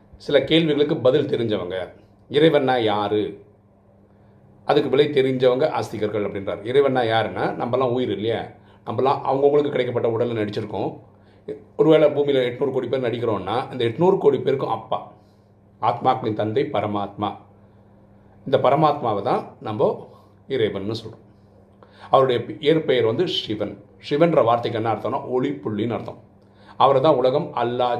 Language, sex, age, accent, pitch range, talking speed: Tamil, male, 40-59, native, 105-135 Hz, 120 wpm